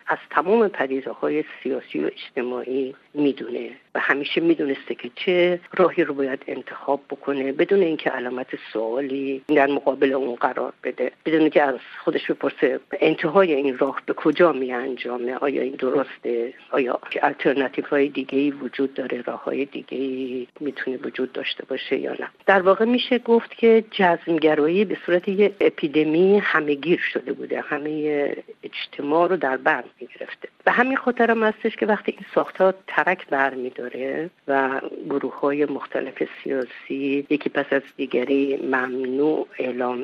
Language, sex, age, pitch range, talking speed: Persian, female, 50-69, 135-180 Hz, 150 wpm